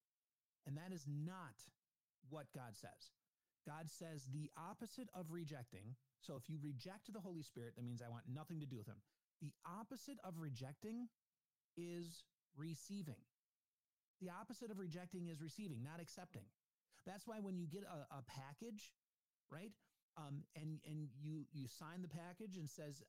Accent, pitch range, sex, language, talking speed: American, 130-175 Hz, male, English, 160 wpm